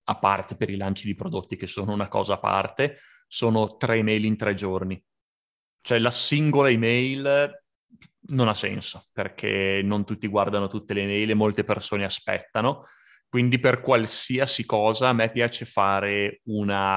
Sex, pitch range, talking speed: male, 100-115 Hz, 165 wpm